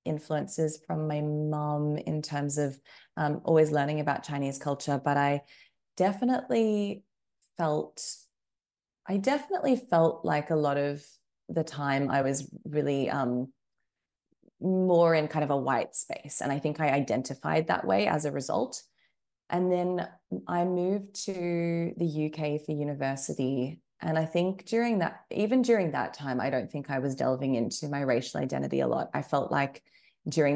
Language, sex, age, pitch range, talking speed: English, female, 20-39, 135-170 Hz, 160 wpm